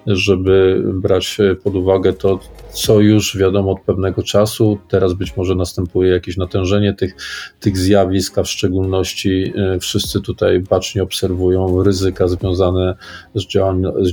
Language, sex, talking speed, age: Polish, male, 125 wpm, 40-59